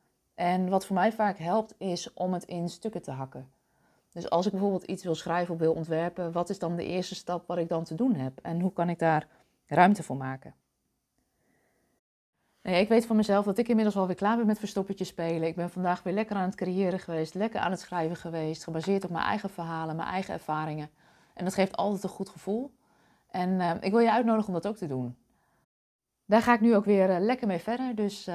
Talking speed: 225 wpm